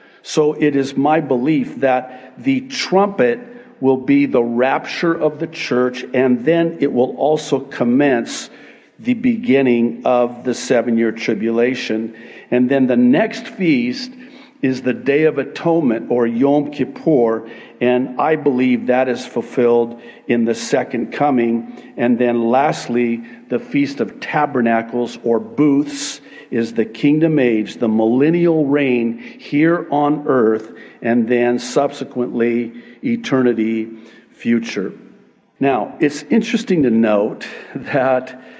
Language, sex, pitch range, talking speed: English, male, 120-165 Hz, 125 wpm